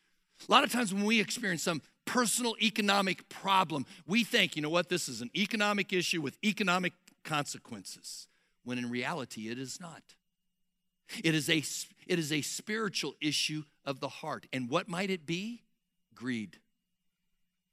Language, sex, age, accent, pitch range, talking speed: English, male, 60-79, American, 150-195 Hz, 150 wpm